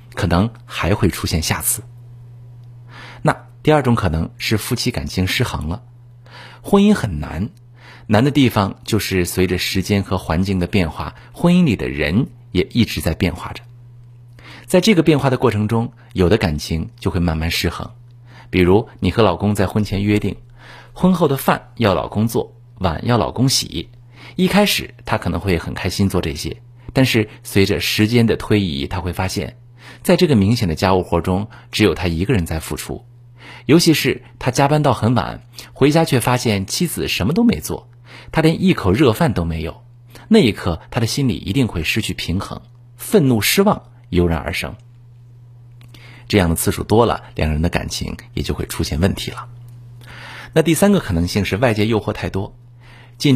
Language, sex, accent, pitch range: Chinese, male, native, 95-120 Hz